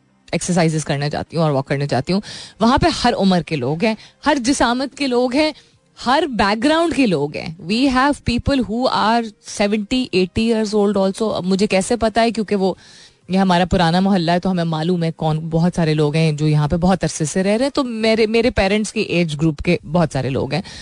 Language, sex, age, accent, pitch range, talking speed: Hindi, female, 30-49, native, 160-215 Hz, 220 wpm